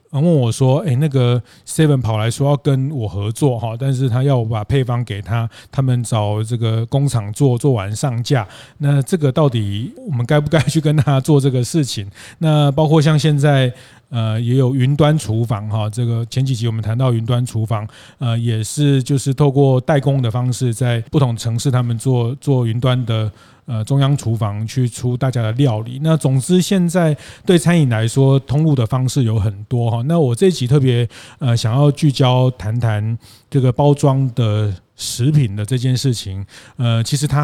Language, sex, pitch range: Chinese, male, 115-140 Hz